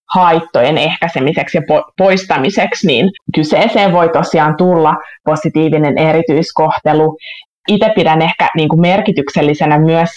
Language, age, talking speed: Finnish, 20-39, 95 wpm